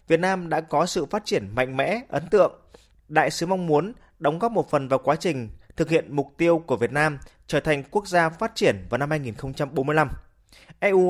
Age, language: 20-39, Vietnamese